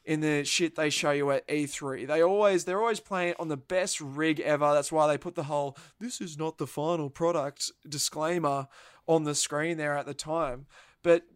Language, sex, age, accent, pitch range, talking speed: English, male, 20-39, Australian, 145-185 Hz, 205 wpm